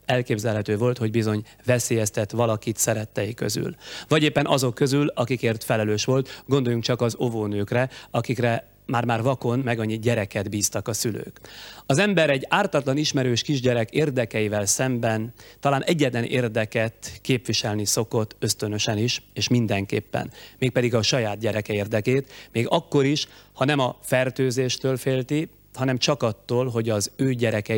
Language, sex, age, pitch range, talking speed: Hungarian, male, 30-49, 110-130 Hz, 145 wpm